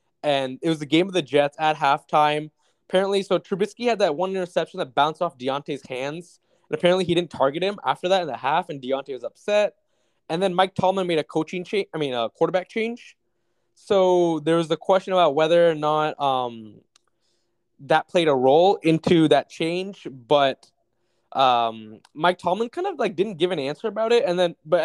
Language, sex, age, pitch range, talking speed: English, male, 20-39, 145-195 Hz, 200 wpm